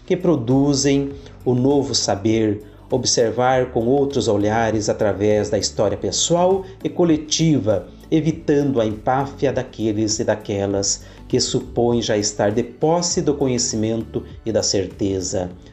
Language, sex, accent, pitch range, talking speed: Portuguese, male, Brazilian, 105-150 Hz, 120 wpm